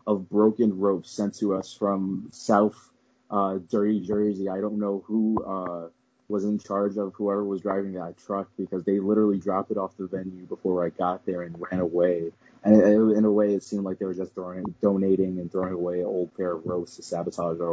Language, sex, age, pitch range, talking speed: English, male, 30-49, 95-105 Hz, 220 wpm